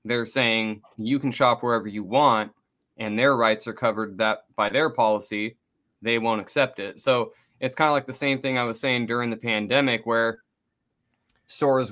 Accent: American